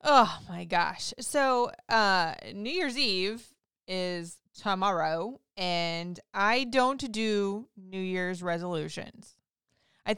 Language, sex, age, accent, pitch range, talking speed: English, female, 20-39, American, 175-235 Hz, 105 wpm